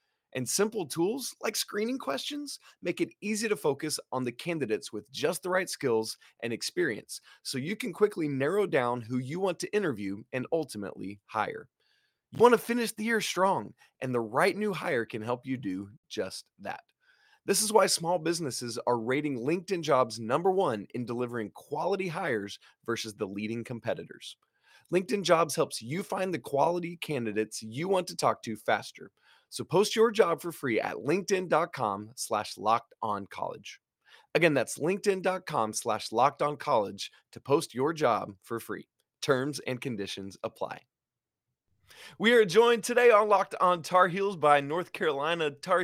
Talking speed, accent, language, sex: 165 wpm, American, English, male